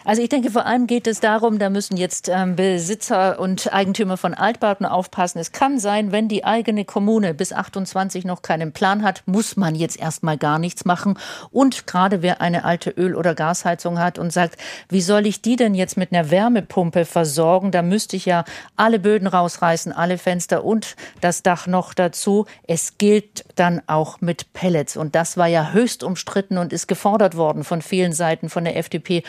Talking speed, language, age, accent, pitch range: 195 wpm, German, 50-69, German, 175-205 Hz